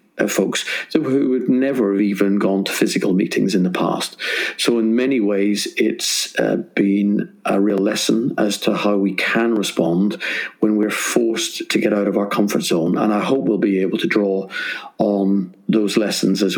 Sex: male